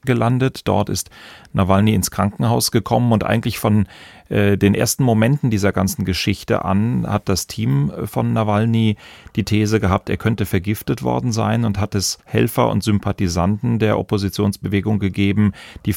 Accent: German